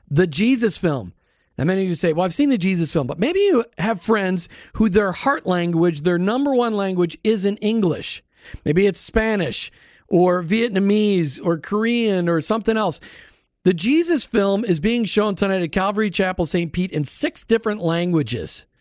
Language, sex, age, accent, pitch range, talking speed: English, male, 40-59, American, 165-220 Hz, 180 wpm